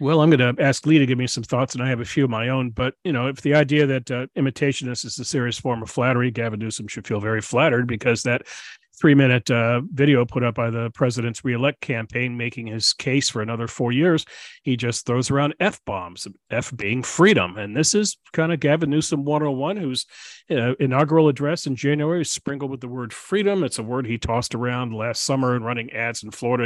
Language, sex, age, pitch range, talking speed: English, male, 40-59, 115-145 Hz, 225 wpm